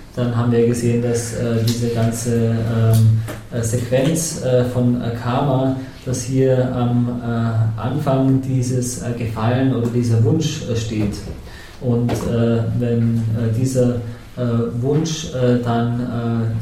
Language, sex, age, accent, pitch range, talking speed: English, male, 20-39, German, 115-125 Hz, 135 wpm